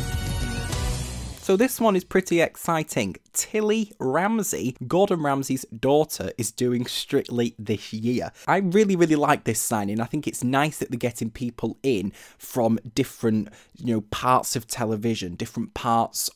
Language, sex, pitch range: English, male, 115-150 Hz